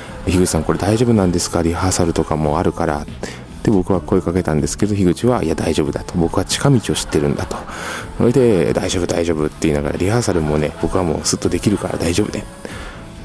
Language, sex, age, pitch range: Japanese, male, 20-39, 80-100 Hz